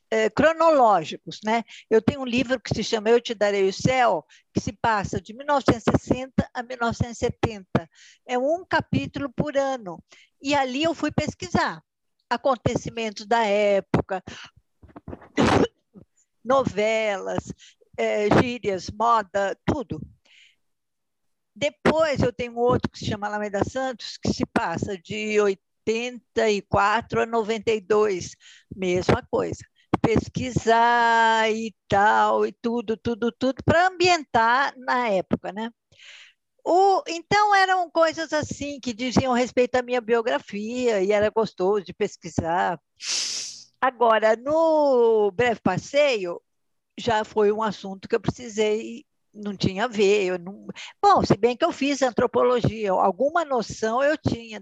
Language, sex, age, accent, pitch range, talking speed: Portuguese, female, 60-79, Brazilian, 205-255 Hz, 125 wpm